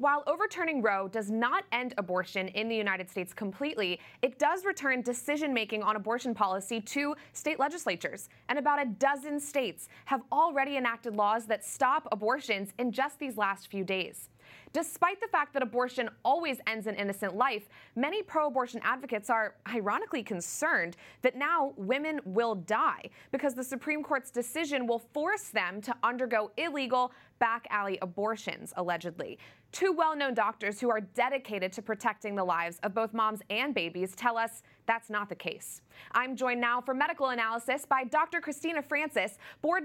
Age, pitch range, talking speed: 20-39, 210-275 Hz, 160 wpm